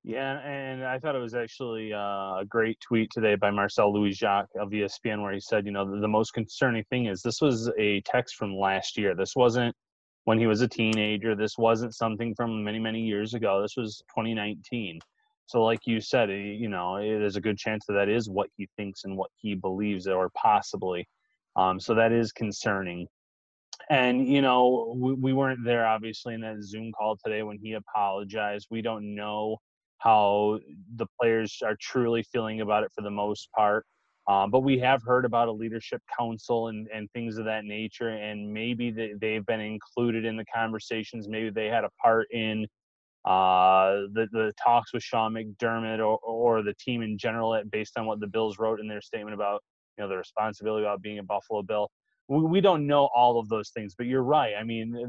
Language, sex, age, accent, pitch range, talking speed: English, male, 30-49, American, 105-120 Hz, 200 wpm